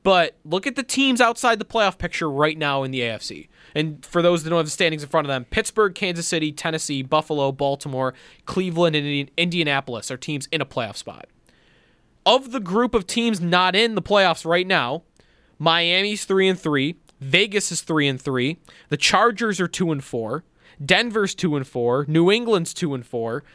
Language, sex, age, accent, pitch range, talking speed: English, male, 20-39, American, 150-200 Hz, 195 wpm